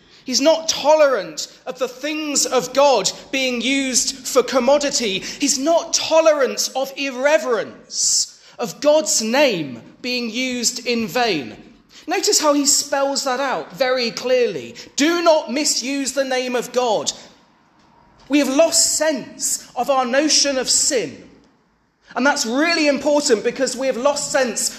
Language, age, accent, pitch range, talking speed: English, 30-49, British, 250-295 Hz, 140 wpm